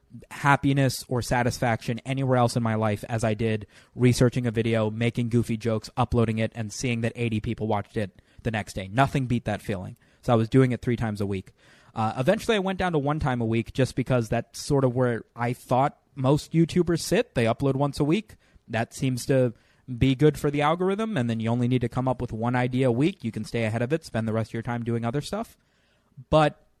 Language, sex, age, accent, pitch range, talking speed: English, male, 20-39, American, 115-140 Hz, 235 wpm